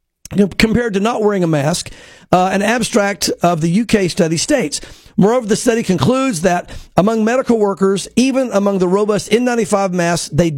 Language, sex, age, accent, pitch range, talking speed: English, male, 50-69, American, 185-230 Hz, 165 wpm